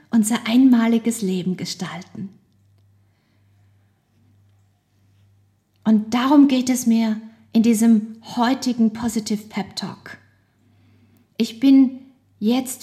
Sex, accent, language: female, German, German